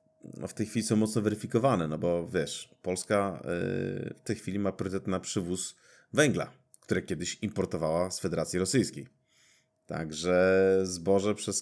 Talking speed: 150 wpm